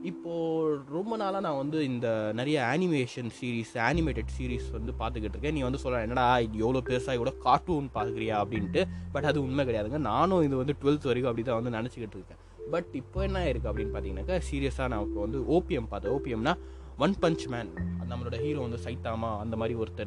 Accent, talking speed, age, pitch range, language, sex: native, 180 wpm, 20-39, 100-155 Hz, Tamil, male